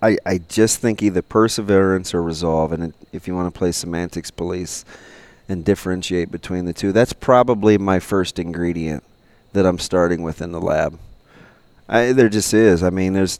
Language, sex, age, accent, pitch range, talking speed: English, male, 30-49, American, 90-110 Hz, 180 wpm